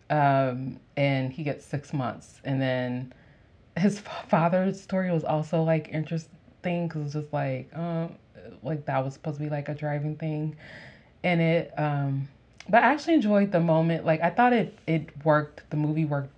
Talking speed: 185 wpm